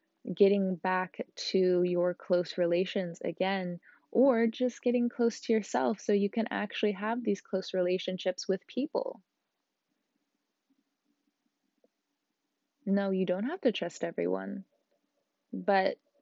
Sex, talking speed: female, 115 wpm